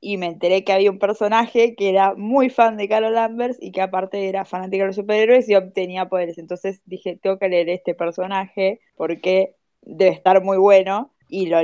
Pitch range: 180-210 Hz